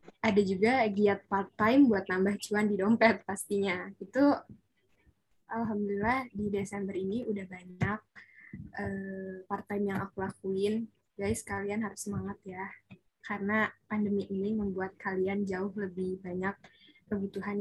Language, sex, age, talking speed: Indonesian, female, 10-29, 125 wpm